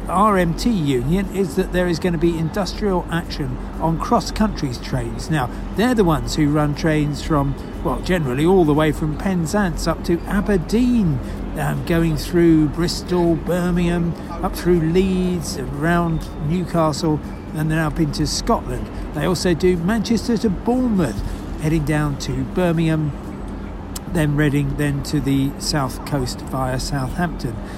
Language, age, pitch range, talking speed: English, 50-69, 150-180 Hz, 145 wpm